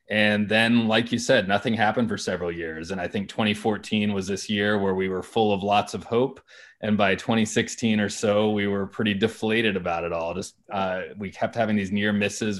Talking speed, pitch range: 215 wpm, 95-105 Hz